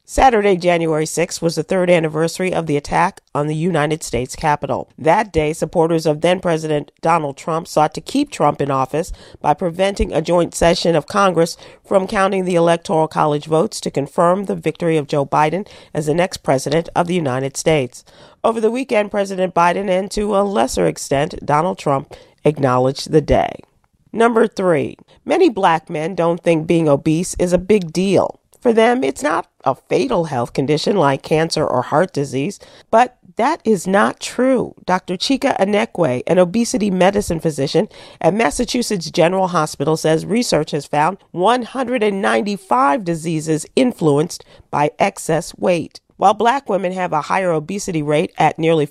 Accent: American